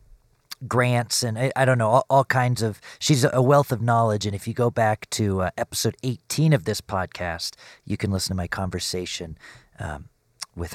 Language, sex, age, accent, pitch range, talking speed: English, male, 40-59, American, 100-125 Hz, 195 wpm